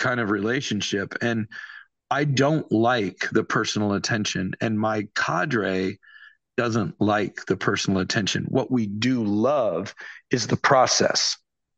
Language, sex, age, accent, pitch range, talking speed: English, male, 40-59, American, 105-130 Hz, 125 wpm